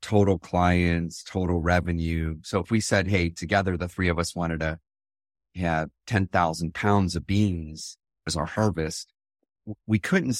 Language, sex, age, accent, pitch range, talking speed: English, male, 30-49, American, 85-100 Hz, 150 wpm